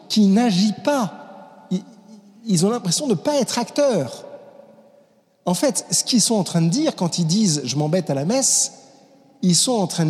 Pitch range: 145-200 Hz